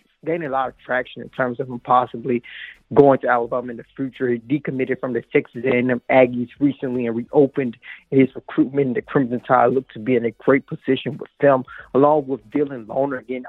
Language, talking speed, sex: English, 200 wpm, male